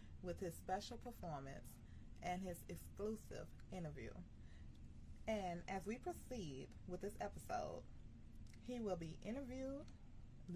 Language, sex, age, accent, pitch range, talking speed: English, female, 20-39, American, 155-205 Hz, 110 wpm